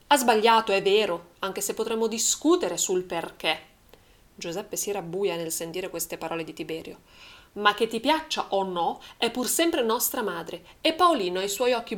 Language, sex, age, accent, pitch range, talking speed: Italian, female, 30-49, native, 175-255 Hz, 180 wpm